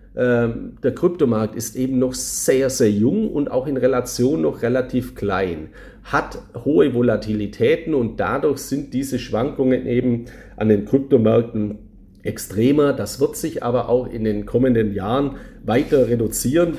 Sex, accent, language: male, German, German